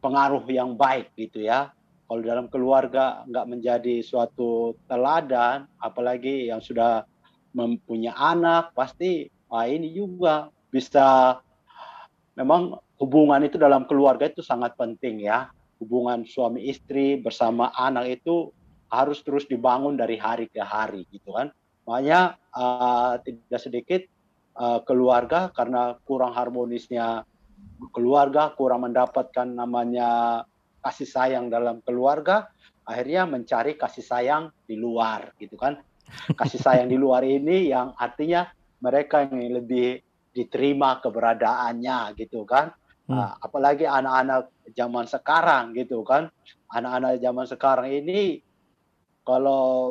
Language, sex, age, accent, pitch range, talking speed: Indonesian, male, 50-69, native, 120-140 Hz, 115 wpm